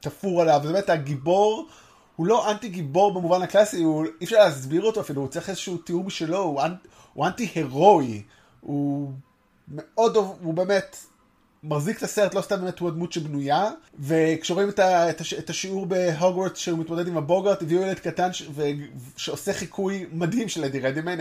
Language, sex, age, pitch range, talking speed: Hebrew, male, 20-39, 150-190 Hz, 165 wpm